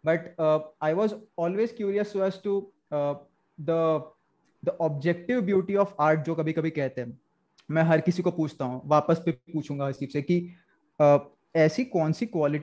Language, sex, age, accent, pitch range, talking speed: English, male, 20-39, Indian, 155-195 Hz, 145 wpm